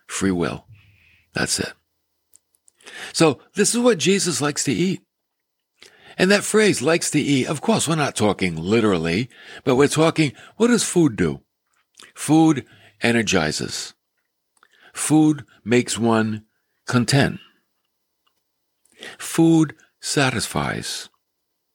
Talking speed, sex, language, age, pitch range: 110 wpm, male, English, 60-79, 115-160 Hz